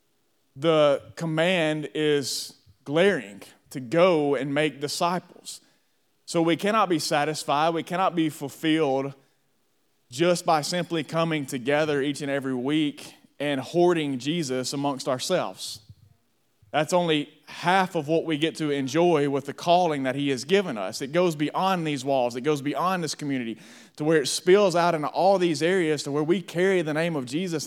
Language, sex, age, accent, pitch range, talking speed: English, male, 30-49, American, 140-170 Hz, 165 wpm